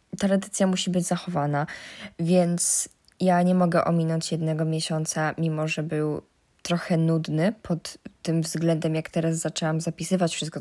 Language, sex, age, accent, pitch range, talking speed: Polish, female, 20-39, native, 165-190 Hz, 135 wpm